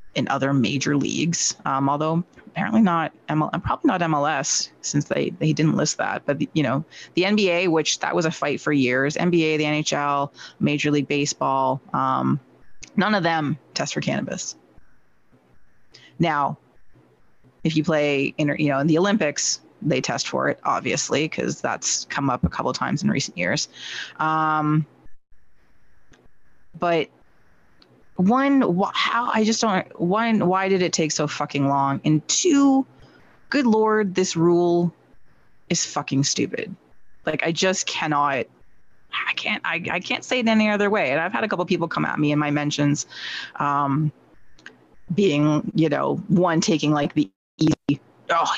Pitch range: 145-185 Hz